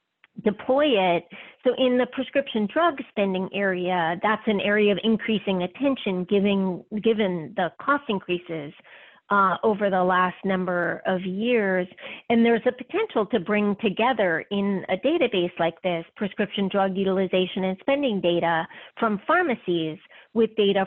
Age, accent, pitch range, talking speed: 40-59, American, 185-240 Hz, 140 wpm